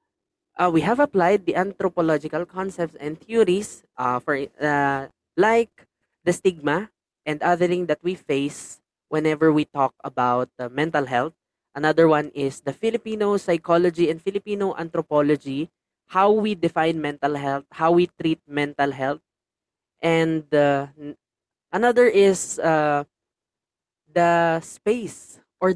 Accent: native